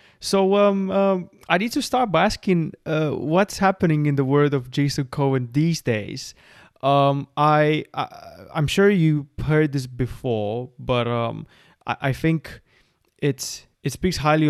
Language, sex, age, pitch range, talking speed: English, male, 20-39, 125-150 Hz, 155 wpm